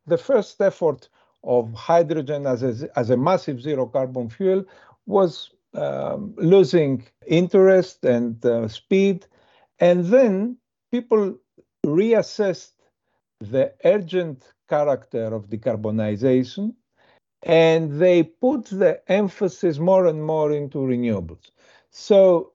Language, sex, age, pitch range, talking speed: English, male, 50-69, 120-180 Hz, 105 wpm